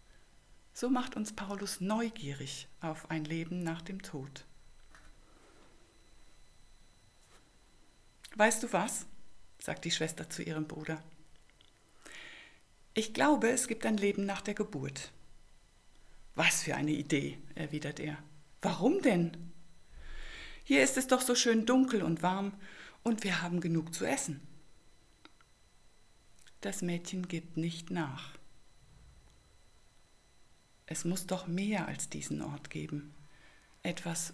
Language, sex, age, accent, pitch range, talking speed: German, female, 60-79, German, 150-200 Hz, 115 wpm